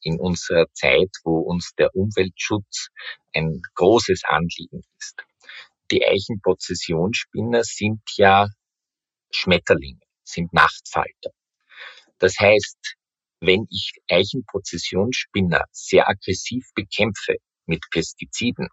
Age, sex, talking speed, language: 50-69, male, 90 wpm, German